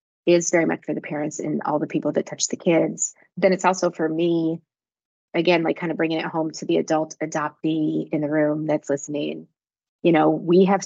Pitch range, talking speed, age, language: 155-180 Hz, 215 wpm, 20-39, English